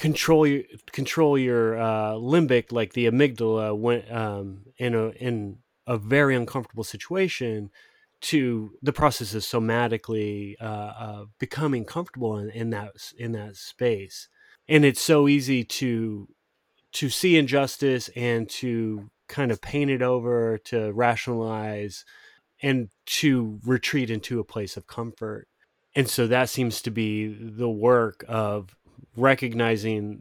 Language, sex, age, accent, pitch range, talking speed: English, male, 30-49, American, 110-130 Hz, 135 wpm